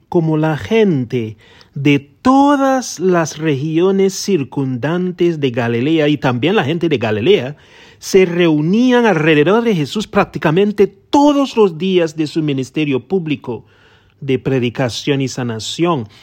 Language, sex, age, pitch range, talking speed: English, male, 40-59, 120-175 Hz, 120 wpm